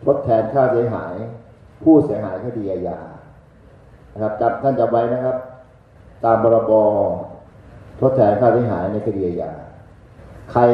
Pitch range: 105-130 Hz